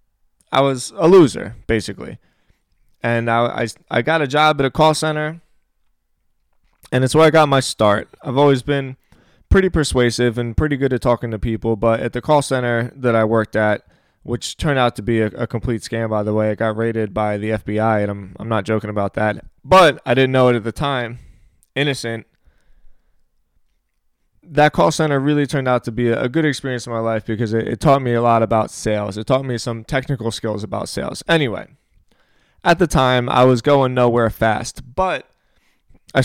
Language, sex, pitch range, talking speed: English, male, 110-135 Hz, 195 wpm